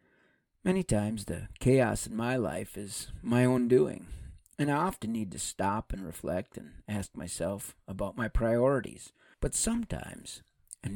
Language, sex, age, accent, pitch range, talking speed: English, male, 50-69, American, 95-125 Hz, 155 wpm